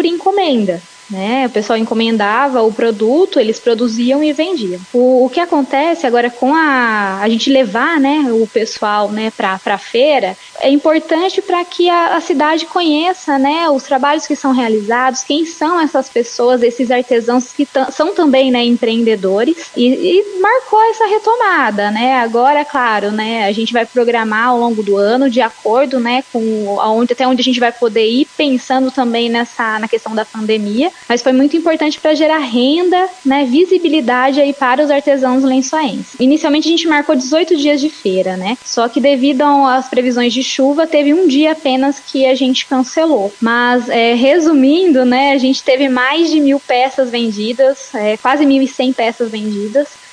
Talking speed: 170 wpm